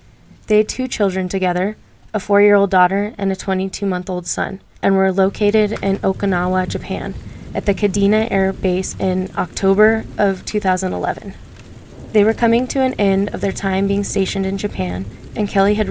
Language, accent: English, American